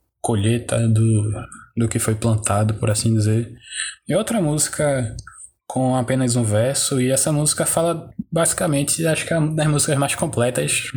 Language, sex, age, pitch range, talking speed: Portuguese, male, 20-39, 115-140 Hz, 160 wpm